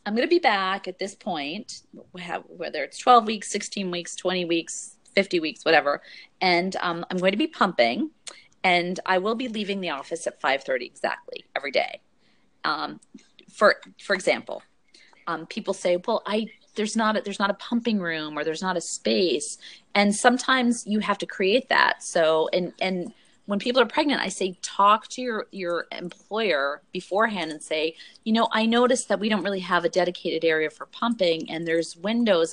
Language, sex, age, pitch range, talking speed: English, female, 30-49, 165-225 Hz, 190 wpm